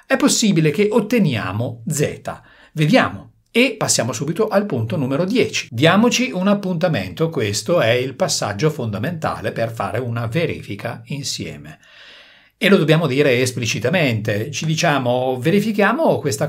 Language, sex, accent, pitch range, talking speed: Italian, male, native, 115-165 Hz, 125 wpm